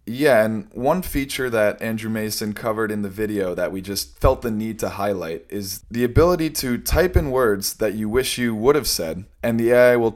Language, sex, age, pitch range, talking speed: English, male, 20-39, 100-125 Hz, 220 wpm